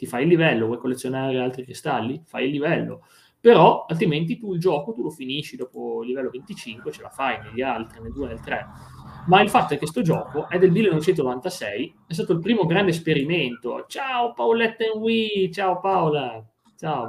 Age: 30-49